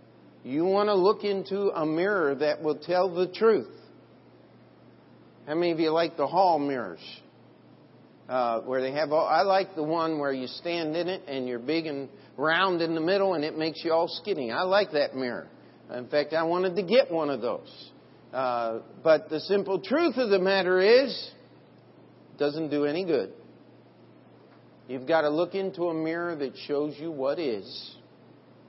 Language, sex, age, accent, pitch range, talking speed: English, male, 50-69, American, 145-185 Hz, 180 wpm